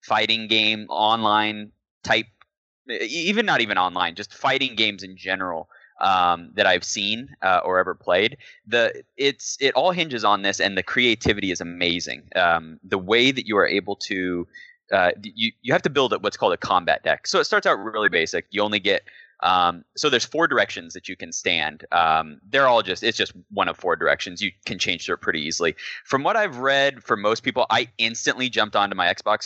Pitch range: 95-130 Hz